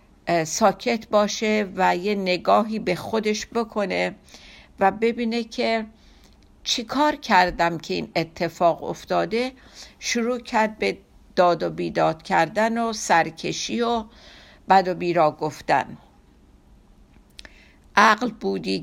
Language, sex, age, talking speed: Persian, female, 60-79, 110 wpm